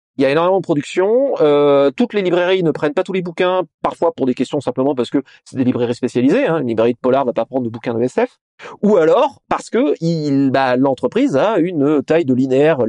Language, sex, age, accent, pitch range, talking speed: French, male, 30-49, French, 125-165 Hz, 240 wpm